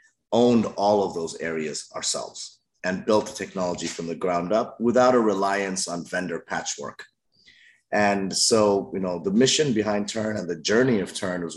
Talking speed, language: 175 wpm, English